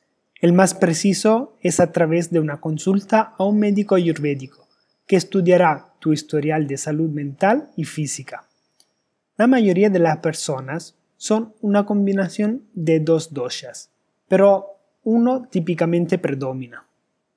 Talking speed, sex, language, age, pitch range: 130 wpm, male, Spanish, 30-49, 155-195 Hz